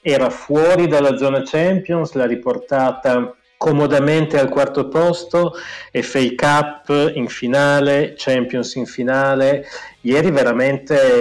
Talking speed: 110 wpm